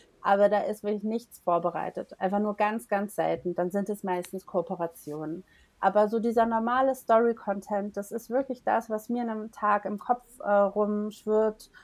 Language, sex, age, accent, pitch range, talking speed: English, female, 30-49, German, 195-215 Hz, 165 wpm